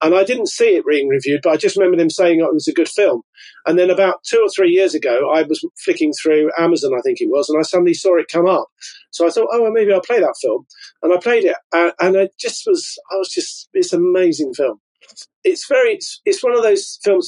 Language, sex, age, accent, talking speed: English, male, 40-59, British, 260 wpm